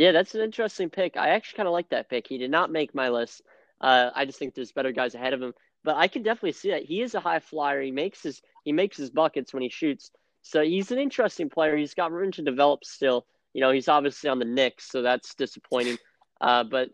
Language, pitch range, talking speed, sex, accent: English, 135-180 Hz, 250 wpm, male, American